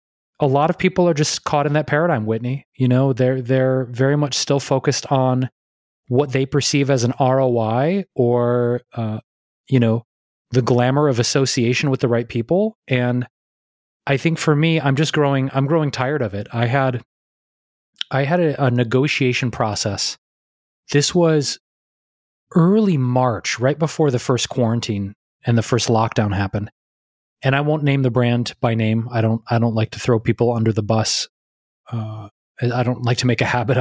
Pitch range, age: 115-135 Hz, 20-39